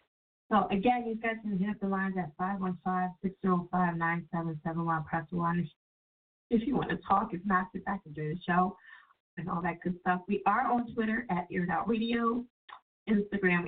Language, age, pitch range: English, 30-49, 170-205 Hz